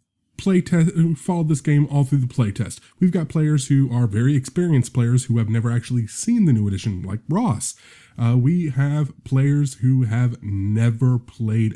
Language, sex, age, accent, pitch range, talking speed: English, male, 20-39, American, 110-145 Hz, 190 wpm